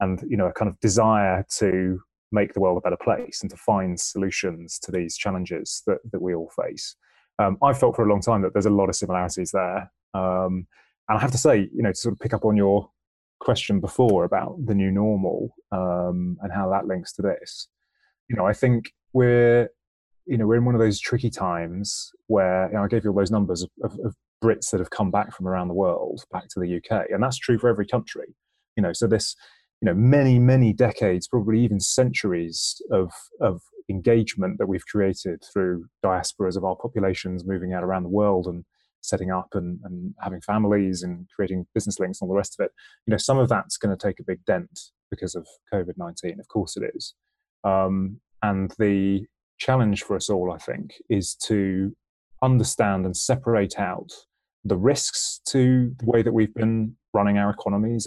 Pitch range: 95-115 Hz